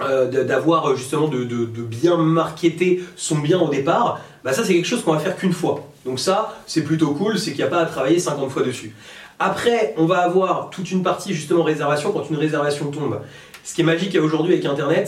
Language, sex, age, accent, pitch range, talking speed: French, male, 30-49, French, 130-170 Hz, 225 wpm